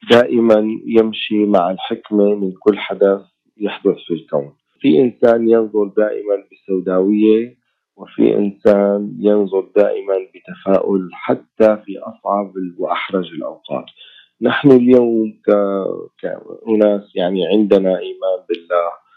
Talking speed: 100 wpm